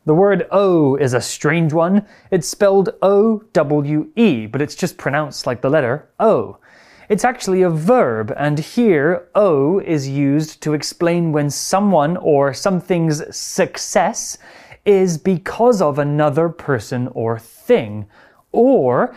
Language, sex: Chinese, male